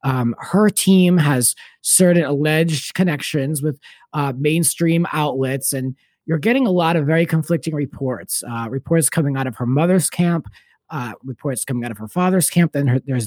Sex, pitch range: male, 135-180 Hz